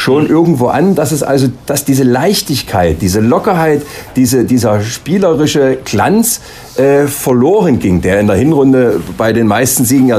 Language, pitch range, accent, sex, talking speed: German, 125-170 Hz, German, male, 160 wpm